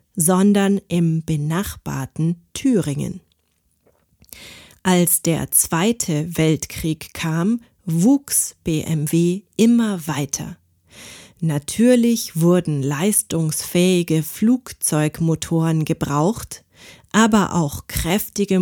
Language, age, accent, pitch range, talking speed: German, 30-49, German, 155-200 Hz, 70 wpm